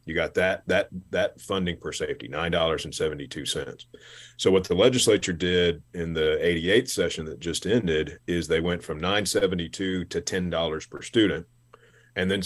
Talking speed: 185 wpm